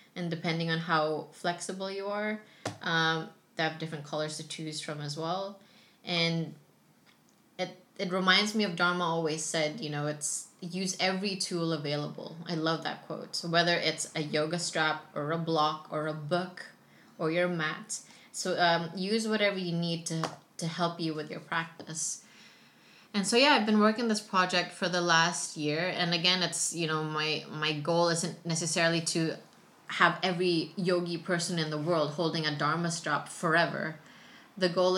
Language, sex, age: English, female, 20-39